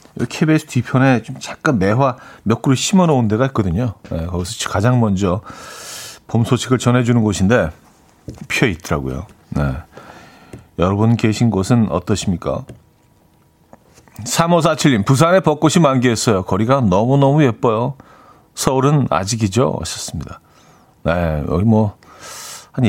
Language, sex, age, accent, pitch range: Korean, male, 40-59, native, 105-150 Hz